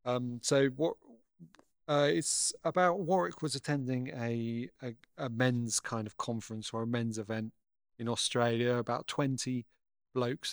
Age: 30-49